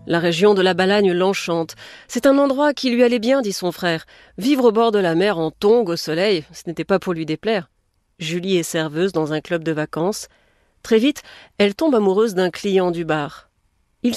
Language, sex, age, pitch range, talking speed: French, female, 40-59, 155-210 Hz, 210 wpm